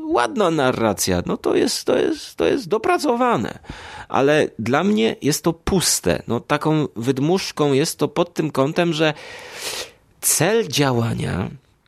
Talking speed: 135 wpm